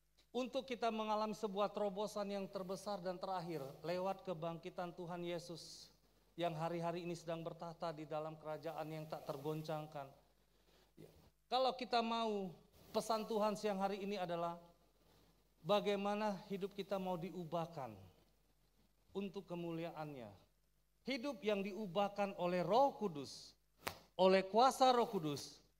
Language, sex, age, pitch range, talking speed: Indonesian, male, 40-59, 165-210 Hz, 115 wpm